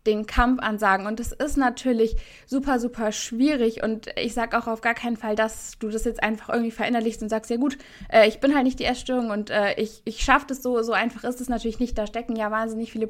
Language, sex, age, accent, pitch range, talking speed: German, female, 20-39, German, 220-255 Hz, 250 wpm